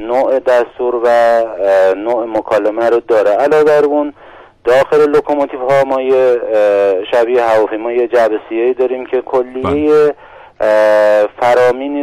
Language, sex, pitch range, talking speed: Persian, male, 115-170 Hz, 110 wpm